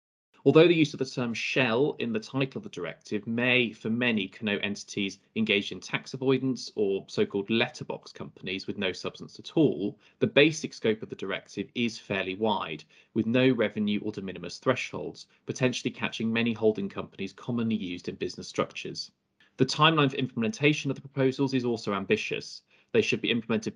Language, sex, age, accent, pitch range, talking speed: English, male, 20-39, British, 105-135 Hz, 180 wpm